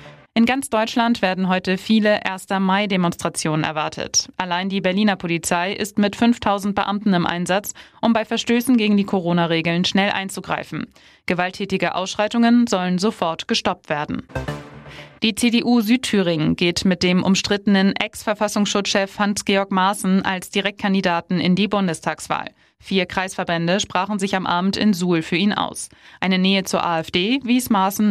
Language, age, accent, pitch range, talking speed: German, 20-39, German, 175-205 Hz, 140 wpm